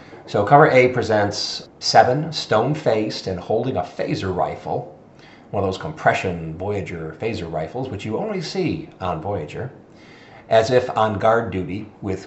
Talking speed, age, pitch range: 135 wpm, 40-59, 95-125 Hz